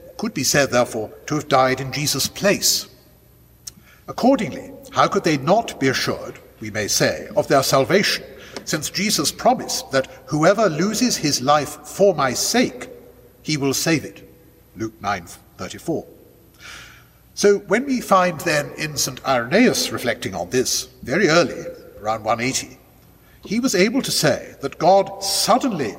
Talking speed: 150 wpm